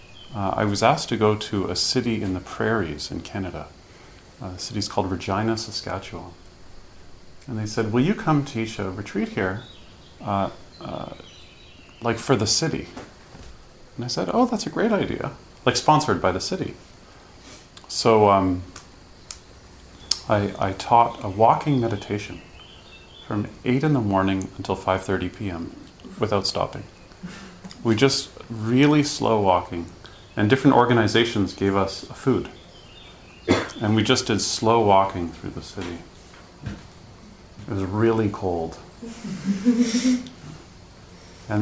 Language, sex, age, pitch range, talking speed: English, male, 30-49, 90-115 Hz, 135 wpm